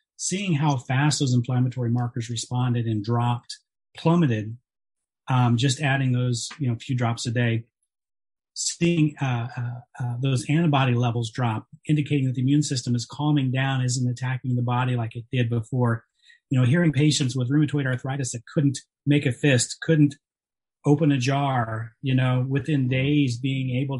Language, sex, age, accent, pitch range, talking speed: English, male, 30-49, American, 120-140 Hz, 170 wpm